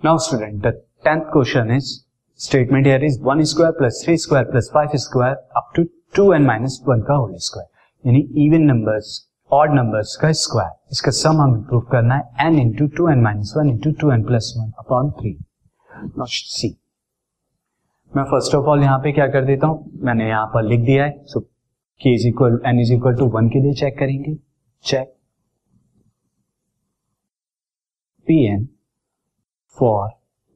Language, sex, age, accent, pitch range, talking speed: Hindi, male, 30-49, native, 120-145 Hz, 80 wpm